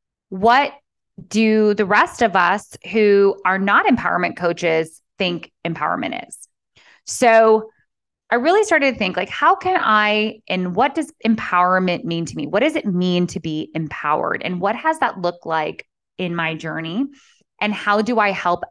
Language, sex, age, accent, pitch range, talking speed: English, female, 20-39, American, 170-220 Hz, 165 wpm